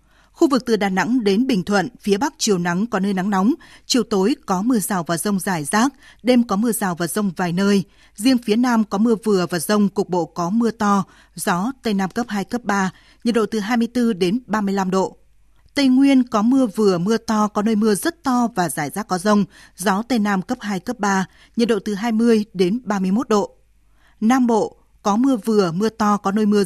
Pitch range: 190-230 Hz